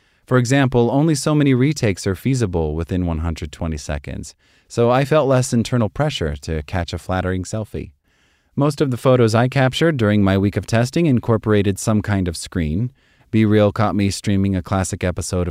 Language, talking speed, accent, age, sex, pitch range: English, 180 wpm, American, 30-49, male, 90-115 Hz